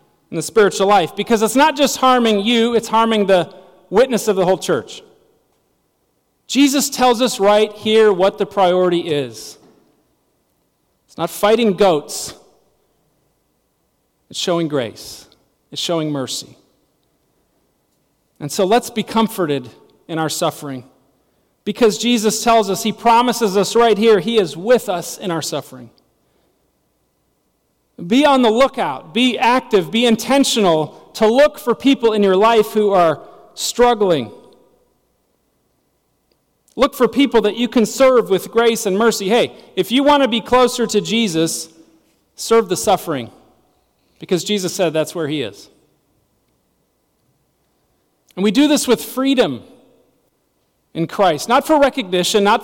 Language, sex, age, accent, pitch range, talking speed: English, male, 40-59, American, 180-240 Hz, 140 wpm